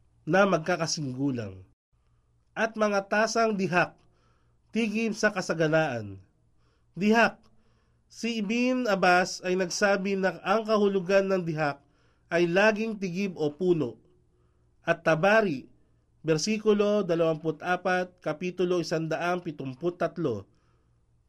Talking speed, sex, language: 85 wpm, male, Filipino